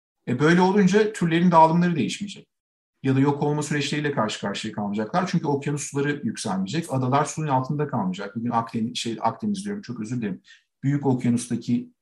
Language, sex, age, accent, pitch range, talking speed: Turkish, male, 50-69, native, 120-170 Hz, 160 wpm